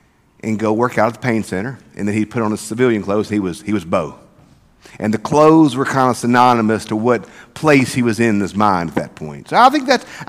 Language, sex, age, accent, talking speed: English, male, 50-69, American, 250 wpm